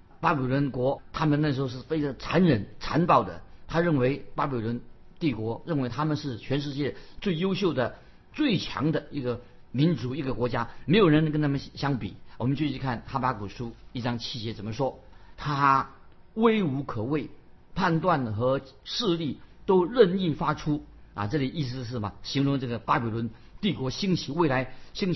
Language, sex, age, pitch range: Chinese, male, 50-69, 120-150 Hz